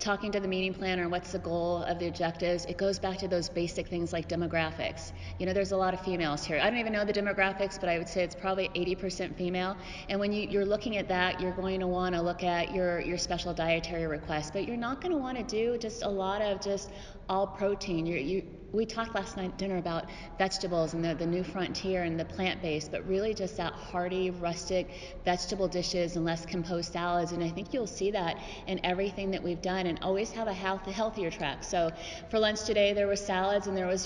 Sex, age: female, 30-49